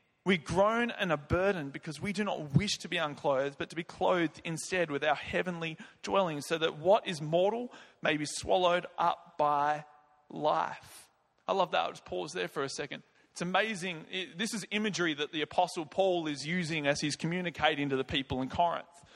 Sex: male